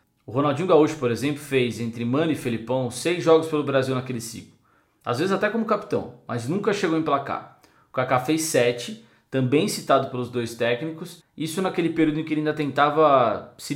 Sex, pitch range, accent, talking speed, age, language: male, 125-160 Hz, Brazilian, 190 wpm, 20-39, Portuguese